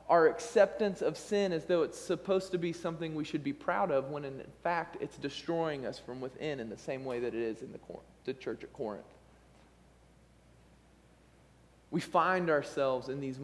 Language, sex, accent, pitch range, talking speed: English, male, American, 140-185 Hz, 190 wpm